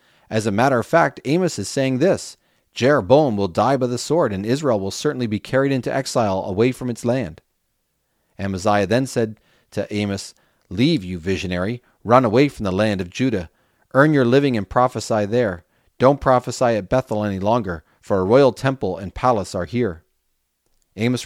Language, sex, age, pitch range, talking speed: English, male, 30-49, 100-130 Hz, 180 wpm